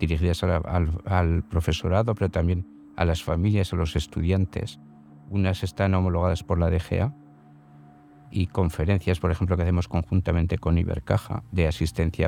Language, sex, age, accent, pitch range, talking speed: Spanish, male, 50-69, Spanish, 85-100 Hz, 145 wpm